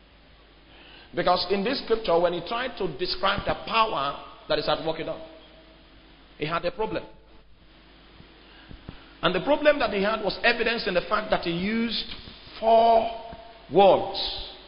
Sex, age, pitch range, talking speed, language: male, 50-69, 150-200 Hz, 145 wpm, English